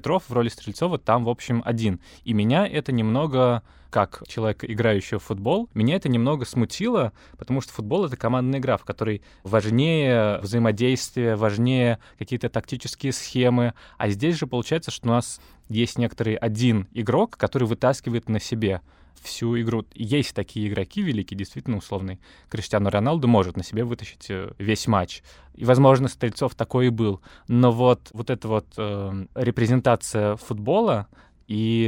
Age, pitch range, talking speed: 20-39, 105-125 Hz, 150 wpm